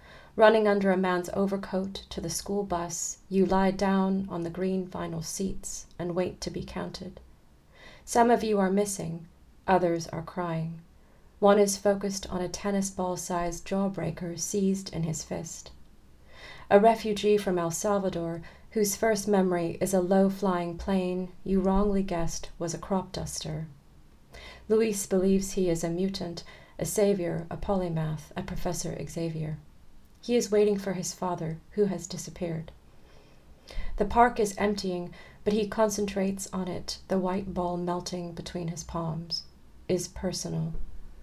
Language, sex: English, female